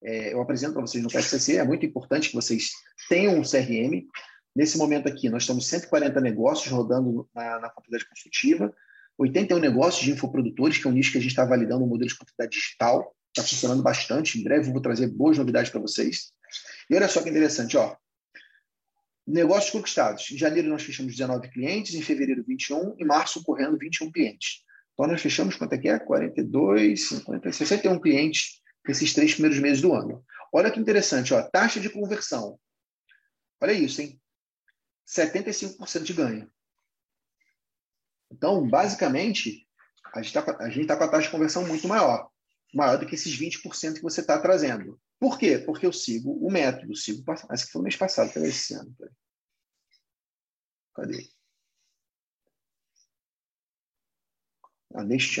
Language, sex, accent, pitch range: Portuguese, male, Brazilian, 130-210 Hz